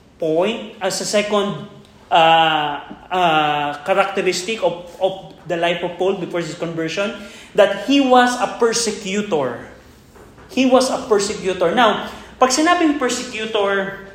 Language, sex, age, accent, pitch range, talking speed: Filipino, male, 20-39, native, 170-210 Hz, 125 wpm